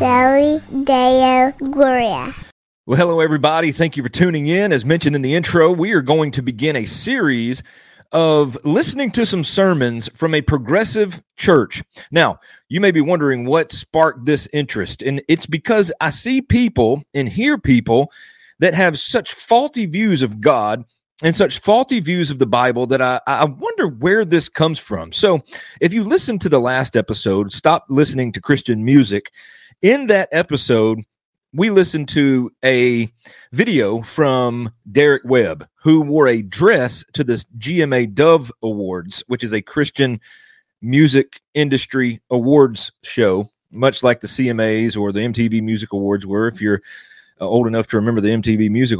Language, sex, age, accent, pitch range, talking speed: English, male, 40-59, American, 115-170 Hz, 160 wpm